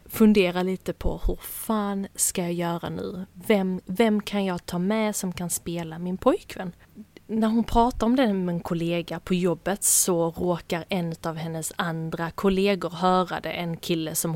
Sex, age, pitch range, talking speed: female, 30-49, 165-200 Hz, 175 wpm